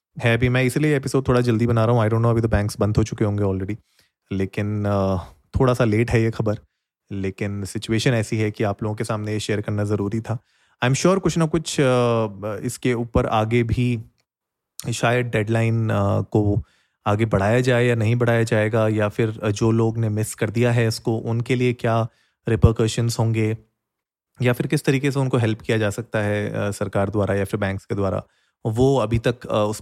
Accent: native